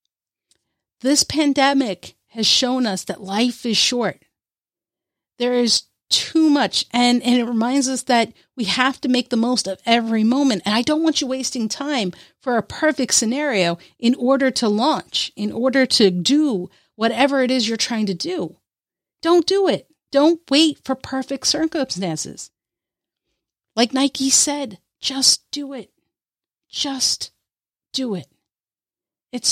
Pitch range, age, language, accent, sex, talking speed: 205-270 Hz, 50-69, English, American, female, 145 wpm